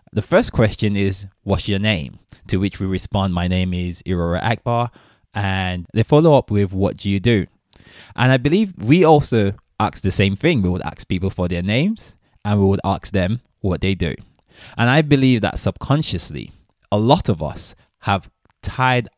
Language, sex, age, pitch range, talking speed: English, male, 20-39, 95-115 Hz, 190 wpm